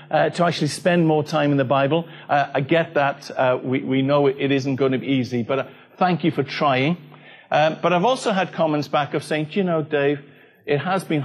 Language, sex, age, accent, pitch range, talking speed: English, male, 50-69, British, 140-175 Hz, 245 wpm